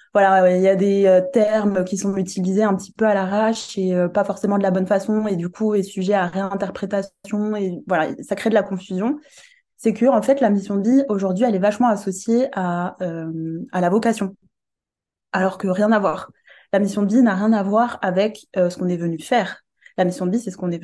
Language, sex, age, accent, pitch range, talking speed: French, female, 20-39, French, 185-235 Hz, 240 wpm